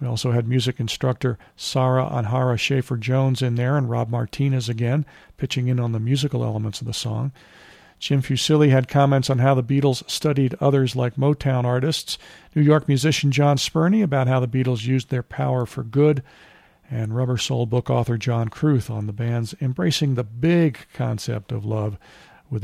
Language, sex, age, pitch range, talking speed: English, male, 50-69, 120-145 Hz, 180 wpm